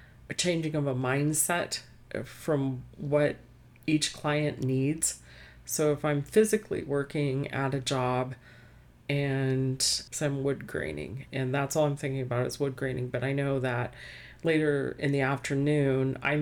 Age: 40-59